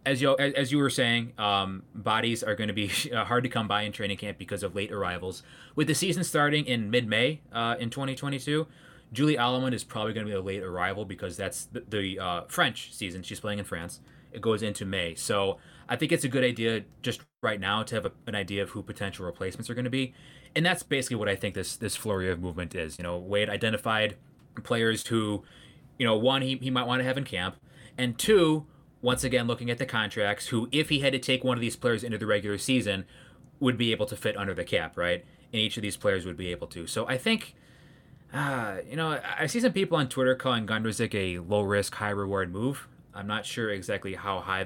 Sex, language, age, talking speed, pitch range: male, English, 20-39, 240 wpm, 100-135 Hz